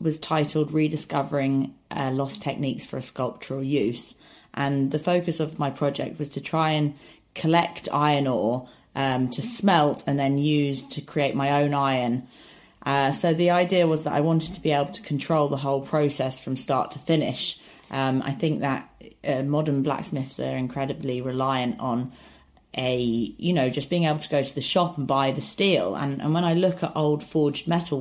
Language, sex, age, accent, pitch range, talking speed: English, female, 30-49, British, 135-160 Hz, 190 wpm